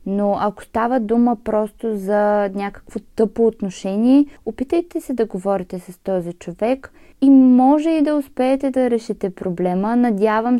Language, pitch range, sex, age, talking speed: Bulgarian, 190-240 Hz, female, 20-39, 140 wpm